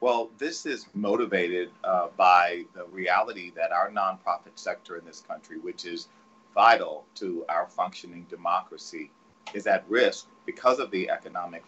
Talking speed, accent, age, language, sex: 150 wpm, American, 40-59, English, male